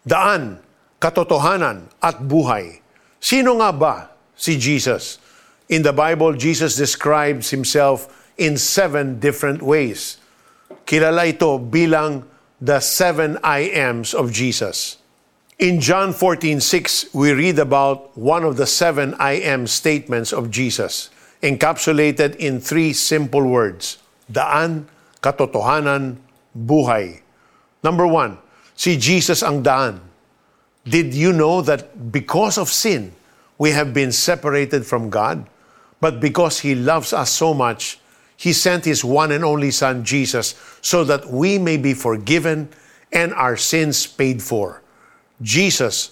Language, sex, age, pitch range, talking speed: Filipino, male, 50-69, 135-160 Hz, 125 wpm